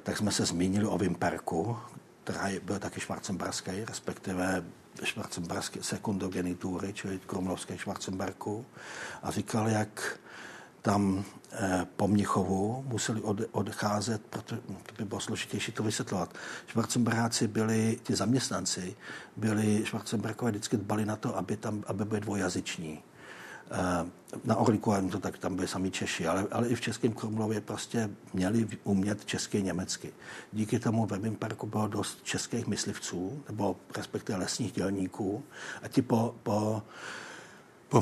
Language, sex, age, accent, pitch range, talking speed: Czech, male, 60-79, native, 95-115 Hz, 130 wpm